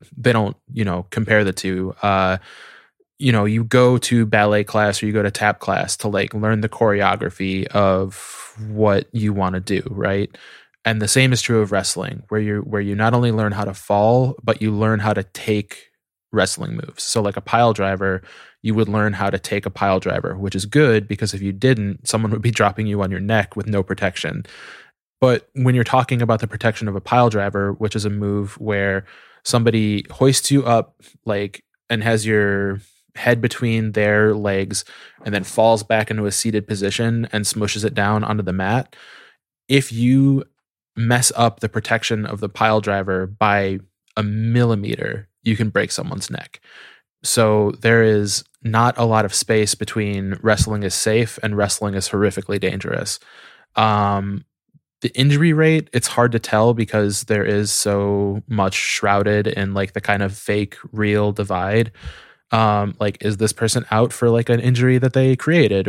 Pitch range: 100-115 Hz